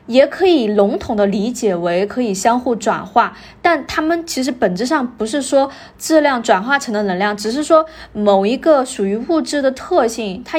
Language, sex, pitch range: Chinese, female, 205-290 Hz